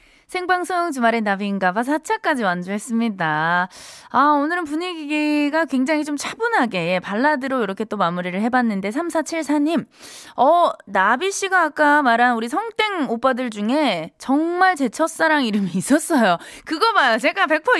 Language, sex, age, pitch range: Korean, female, 20-39, 215-320 Hz